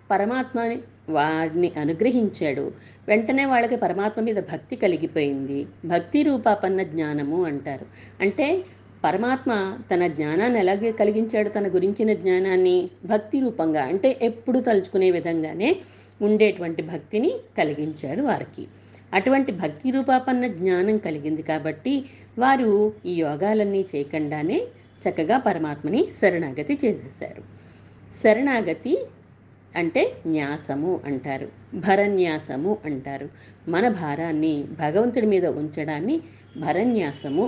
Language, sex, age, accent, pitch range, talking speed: Telugu, female, 50-69, native, 155-230 Hz, 95 wpm